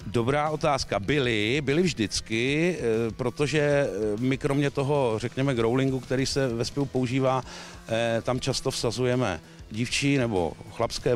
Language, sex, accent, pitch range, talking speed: Czech, male, native, 105-140 Hz, 120 wpm